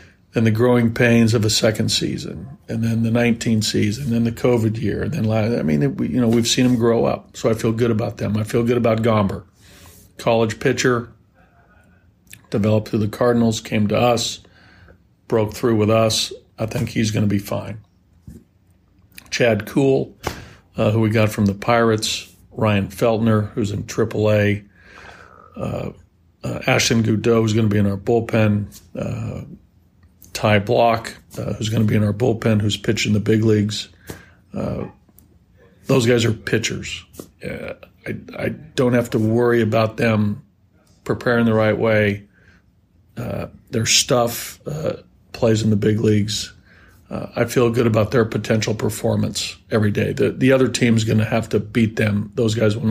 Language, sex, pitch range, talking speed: English, male, 100-115 Hz, 170 wpm